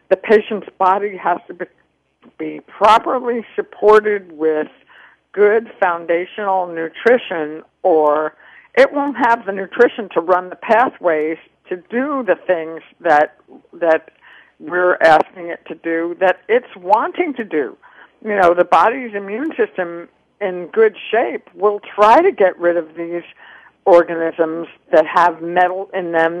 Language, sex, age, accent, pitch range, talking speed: English, female, 60-79, American, 170-230 Hz, 140 wpm